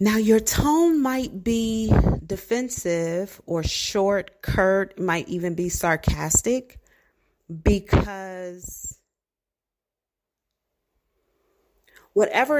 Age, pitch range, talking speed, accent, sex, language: 40-59, 160-195 Hz, 70 wpm, American, female, English